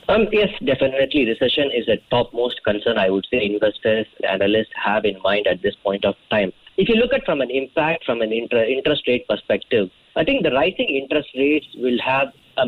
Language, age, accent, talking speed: English, 20-39, Indian, 205 wpm